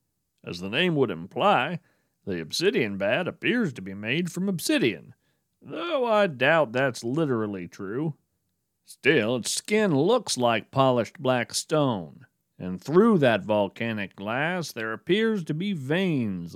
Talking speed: 140 wpm